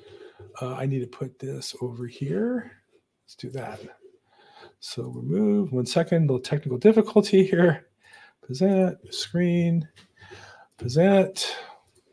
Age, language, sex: 40-59, English, male